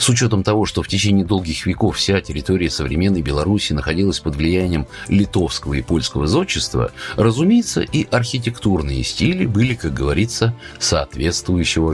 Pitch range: 80-110 Hz